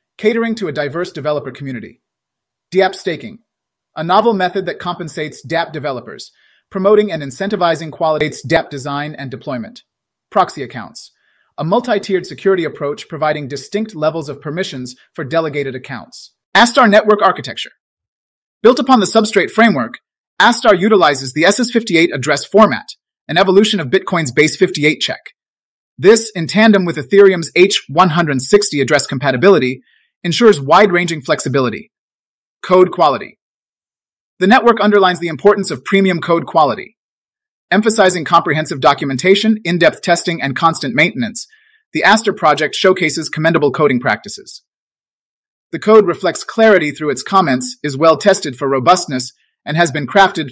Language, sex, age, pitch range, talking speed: English, male, 30-49, 150-205 Hz, 130 wpm